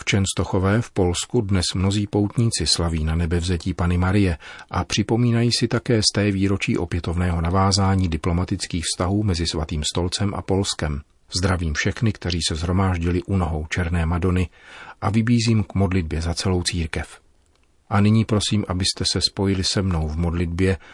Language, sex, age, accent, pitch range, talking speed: Czech, male, 40-59, native, 85-100 Hz, 155 wpm